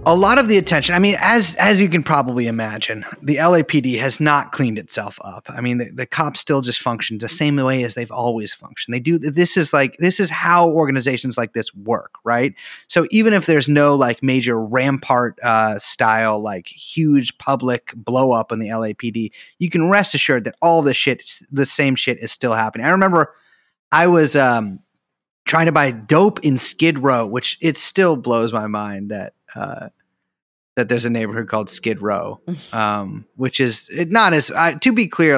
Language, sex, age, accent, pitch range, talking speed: English, male, 30-49, American, 120-160 Hz, 195 wpm